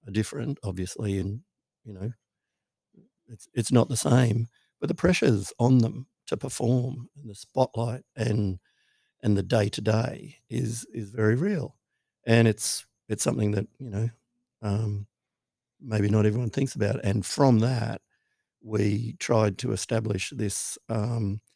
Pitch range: 105-120 Hz